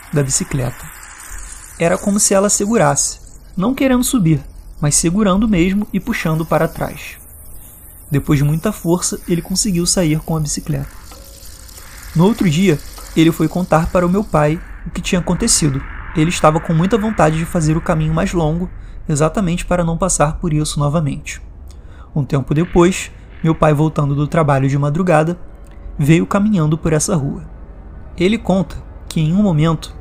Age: 20-39